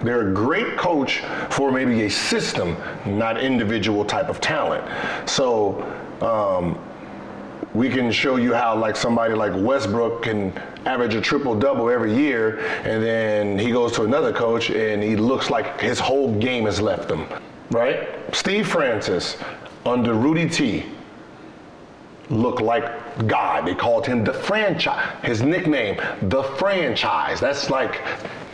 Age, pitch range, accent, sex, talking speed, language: 30-49, 110-145 Hz, American, male, 140 wpm, English